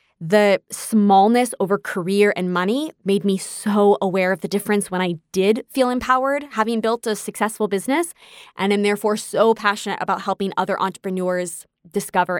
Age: 20-39